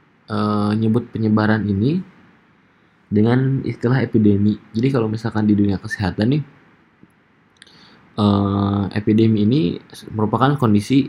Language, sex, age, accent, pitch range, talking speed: Indonesian, male, 20-39, native, 100-115 Hz, 105 wpm